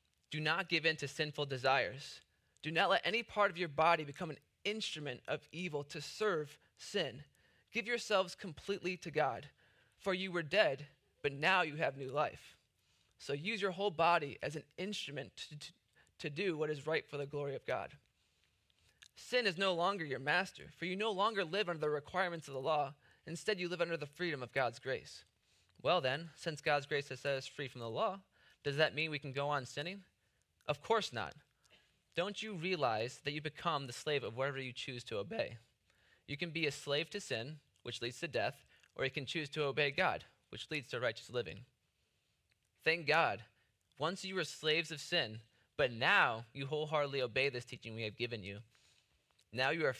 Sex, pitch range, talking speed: male, 125-170 Hz, 200 wpm